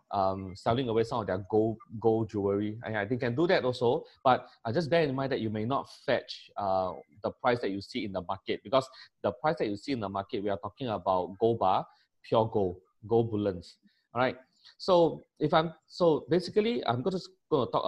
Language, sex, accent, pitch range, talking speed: English, male, Malaysian, 105-130 Hz, 220 wpm